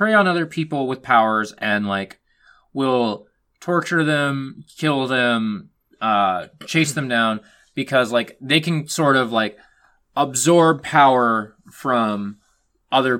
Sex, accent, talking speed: male, American, 125 wpm